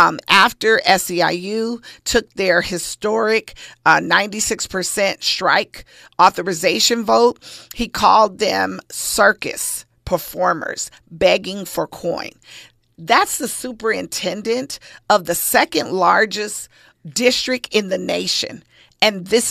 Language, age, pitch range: English, 40-59, 190-240 Hz